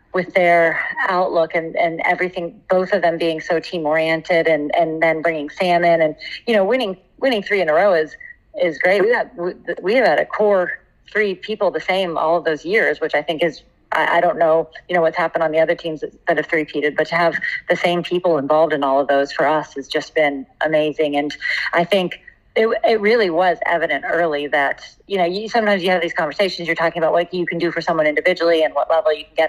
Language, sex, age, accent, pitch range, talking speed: English, female, 30-49, American, 155-185 Hz, 235 wpm